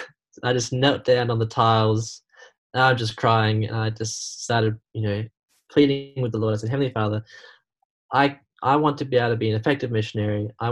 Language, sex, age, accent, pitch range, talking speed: English, male, 10-29, Australian, 110-125 Hz, 215 wpm